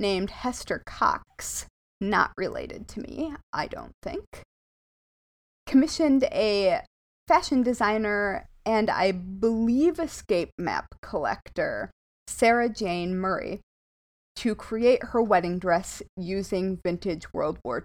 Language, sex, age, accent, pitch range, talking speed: English, female, 20-39, American, 190-240 Hz, 110 wpm